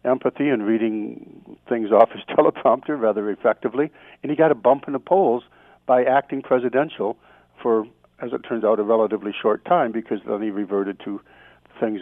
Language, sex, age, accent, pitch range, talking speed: English, male, 60-79, American, 110-150 Hz, 175 wpm